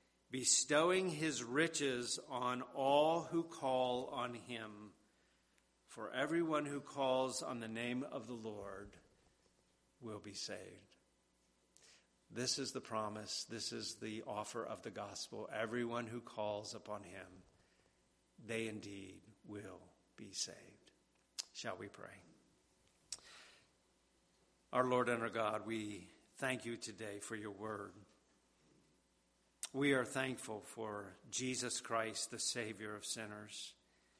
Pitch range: 105-120 Hz